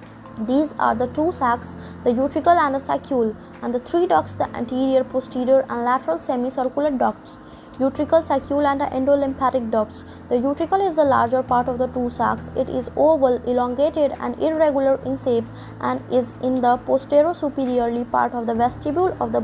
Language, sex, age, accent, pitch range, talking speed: English, female, 20-39, Indian, 245-285 Hz, 175 wpm